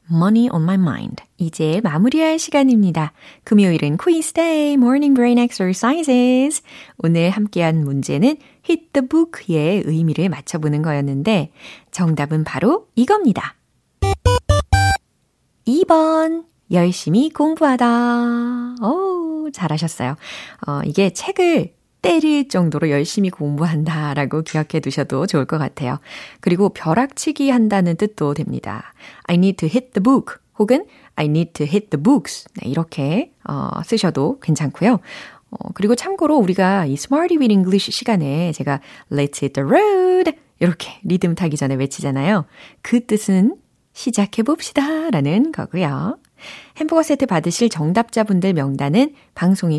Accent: native